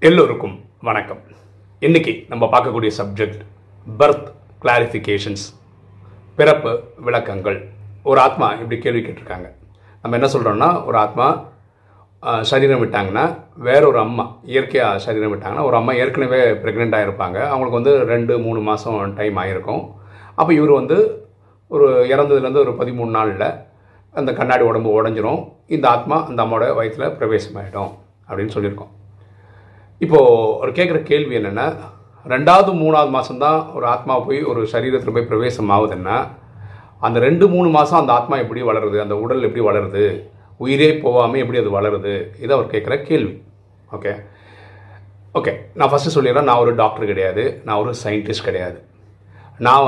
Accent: native